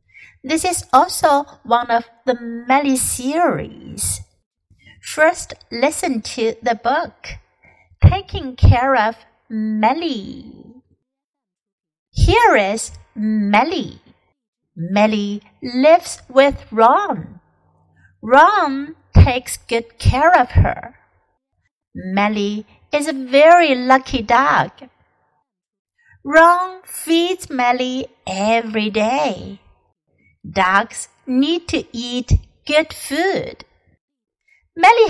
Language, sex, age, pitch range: Chinese, female, 50-69, 220-295 Hz